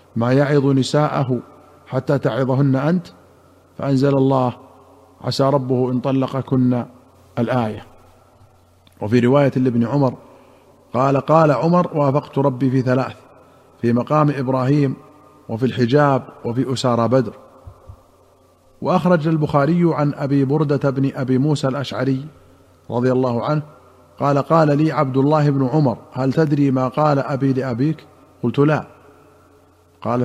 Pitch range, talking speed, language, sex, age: 125-145 Hz, 120 wpm, Arabic, male, 50-69